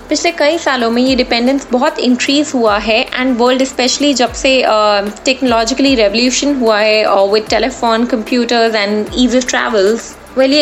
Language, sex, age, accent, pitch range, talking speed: Hindi, female, 20-39, native, 215-260 Hz, 160 wpm